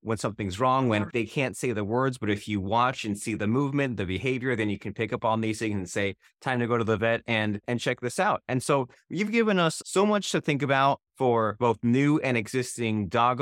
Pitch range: 115-155 Hz